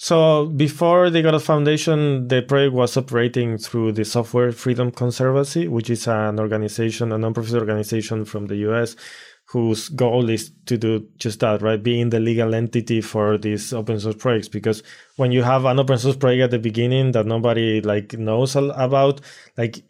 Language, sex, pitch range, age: English, male, 110-130 Hz, 20-39